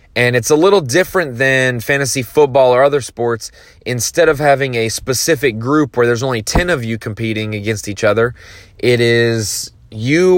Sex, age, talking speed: male, 20-39, 175 wpm